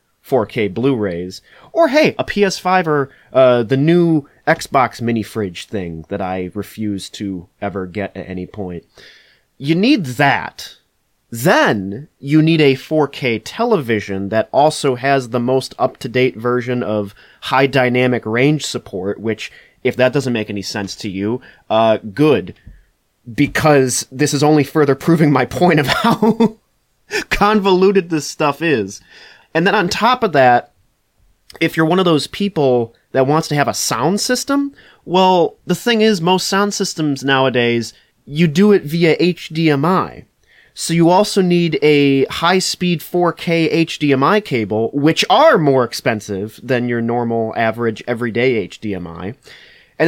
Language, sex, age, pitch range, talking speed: English, male, 30-49, 115-175 Hz, 145 wpm